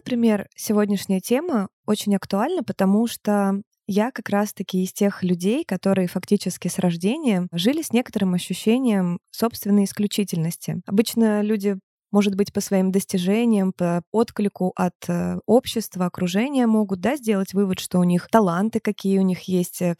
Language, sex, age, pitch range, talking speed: Russian, female, 20-39, 185-215 Hz, 140 wpm